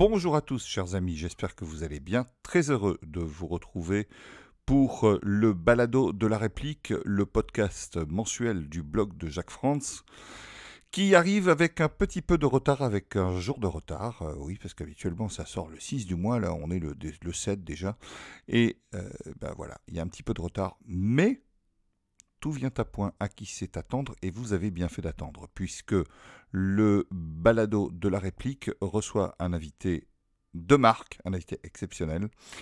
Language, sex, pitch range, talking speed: French, male, 90-115 Hz, 180 wpm